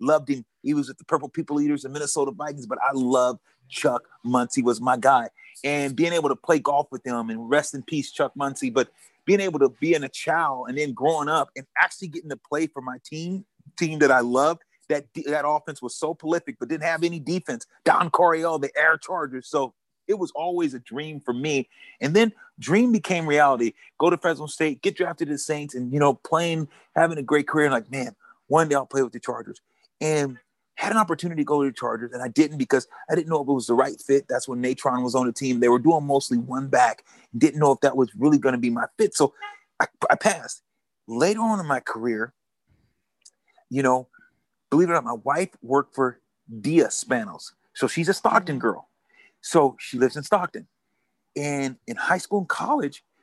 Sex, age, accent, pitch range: male, 30-49, American, 130-165 Hz